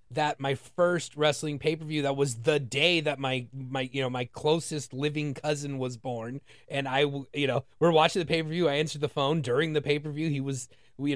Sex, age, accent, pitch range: male, 30-49, American, 130-155 Hz